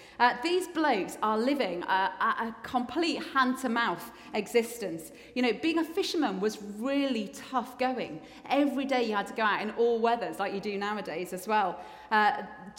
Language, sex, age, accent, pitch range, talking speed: English, female, 30-49, British, 215-265 Hz, 170 wpm